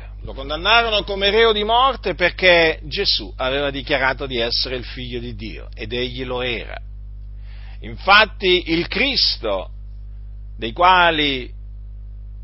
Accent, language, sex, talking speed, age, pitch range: native, Italian, male, 120 wpm, 50-69, 100-160 Hz